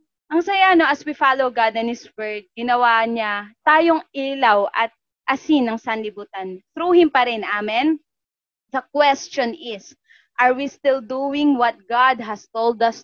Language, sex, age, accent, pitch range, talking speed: English, female, 20-39, Filipino, 225-290 Hz, 160 wpm